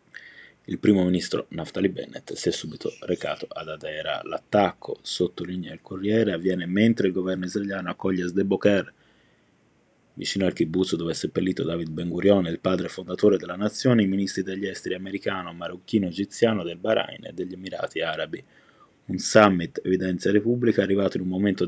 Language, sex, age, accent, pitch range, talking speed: Italian, male, 30-49, native, 90-105 Hz, 160 wpm